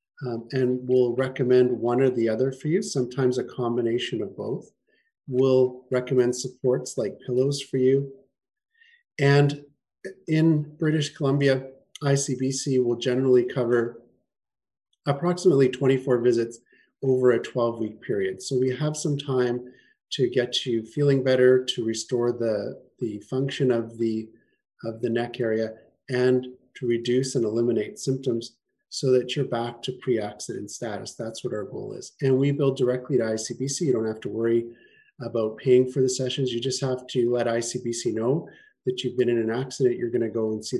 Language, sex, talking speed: English, male, 160 wpm